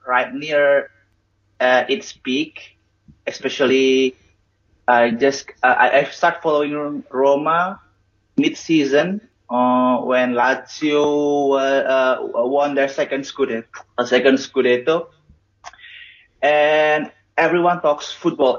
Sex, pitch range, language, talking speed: male, 125-150 Hz, English, 105 wpm